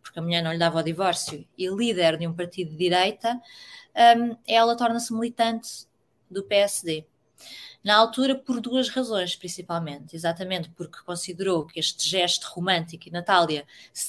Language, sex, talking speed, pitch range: Portuguese, female, 155 wpm, 170-215 Hz